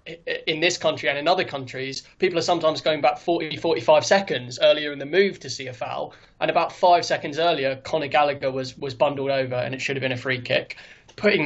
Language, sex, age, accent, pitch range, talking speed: English, male, 20-39, British, 140-170 Hz, 225 wpm